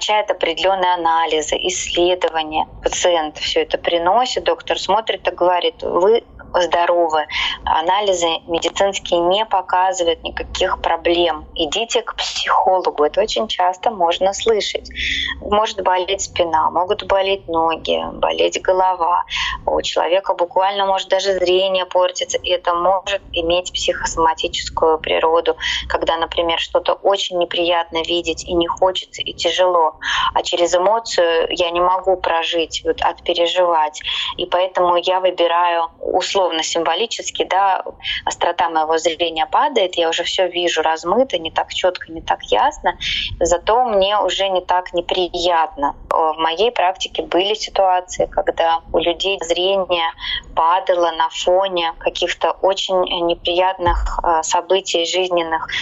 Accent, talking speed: native, 120 wpm